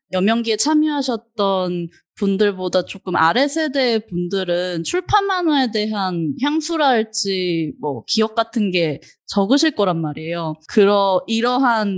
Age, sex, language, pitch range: 20-39, female, Korean, 180-250 Hz